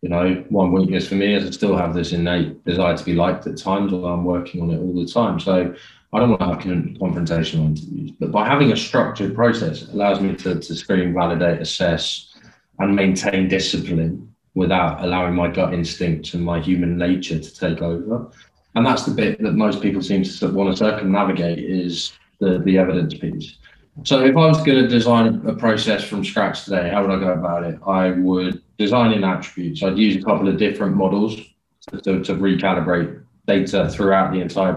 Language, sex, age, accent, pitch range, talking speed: English, male, 20-39, British, 85-100 Hz, 205 wpm